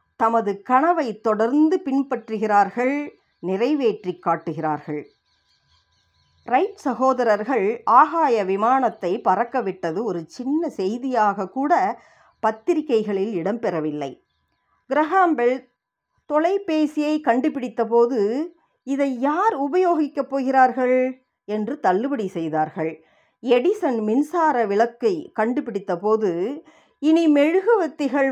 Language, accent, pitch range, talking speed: Tamil, native, 195-290 Hz, 75 wpm